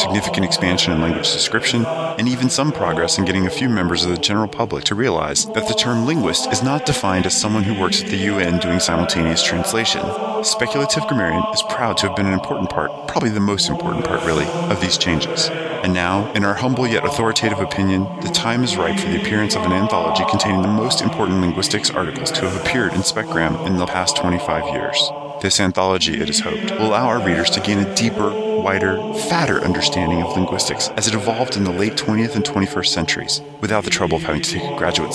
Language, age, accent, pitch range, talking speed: English, 30-49, American, 95-130 Hz, 215 wpm